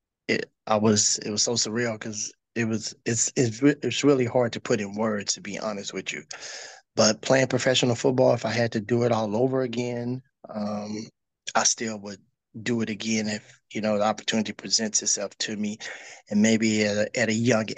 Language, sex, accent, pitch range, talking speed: English, male, American, 105-120 Hz, 205 wpm